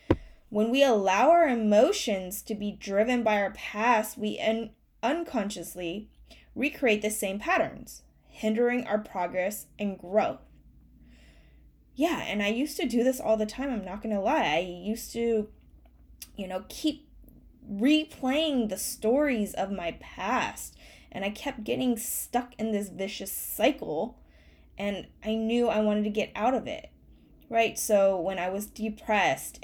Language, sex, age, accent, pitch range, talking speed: English, female, 10-29, American, 200-275 Hz, 150 wpm